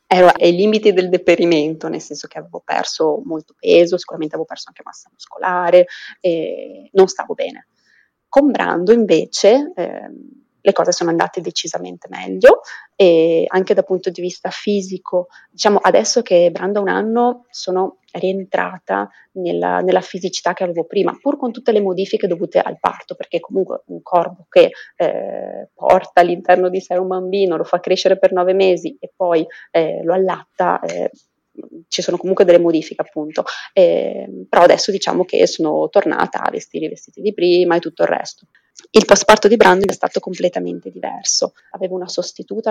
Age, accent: 30-49, native